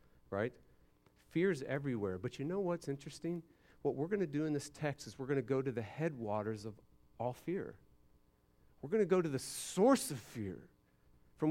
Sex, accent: male, American